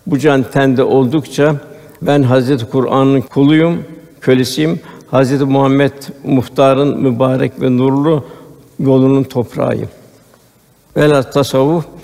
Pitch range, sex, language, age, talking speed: 125-140 Hz, male, Turkish, 60-79, 95 wpm